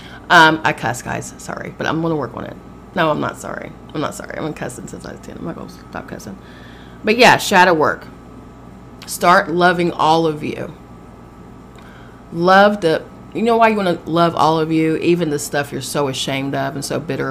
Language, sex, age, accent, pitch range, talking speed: English, female, 30-49, American, 130-165 Hz, 210 wpm